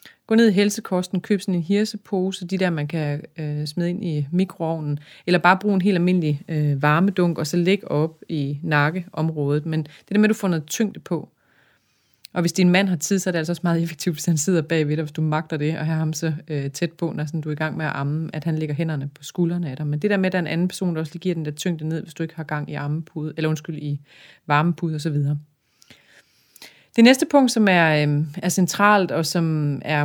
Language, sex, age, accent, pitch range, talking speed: Danish, female, 30-49, native, 155-185 Hz, 260 wpm